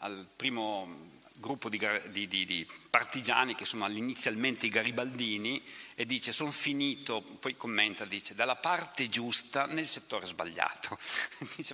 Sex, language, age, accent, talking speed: male, Italian, 50-69, native, 140 wpm